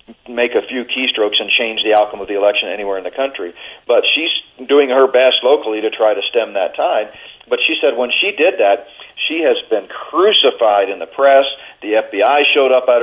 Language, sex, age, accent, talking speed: English, male, 40-59, American, 210 wpm